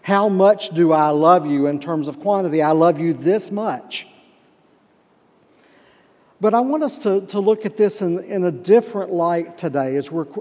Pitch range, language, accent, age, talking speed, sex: 150-195 Hz, English, American, 60-79, 185 wpm, male